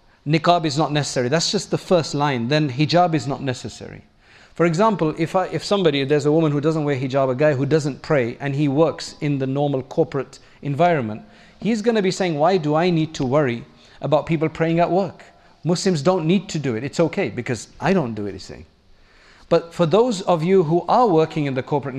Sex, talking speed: male, 215 wpm